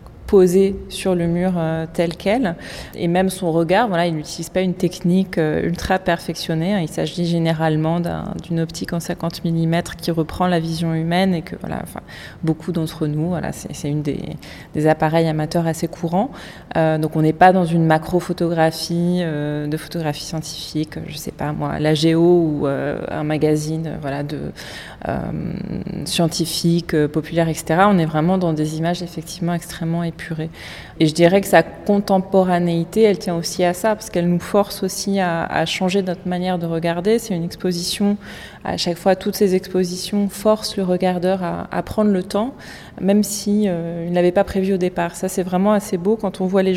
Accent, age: French, 20-39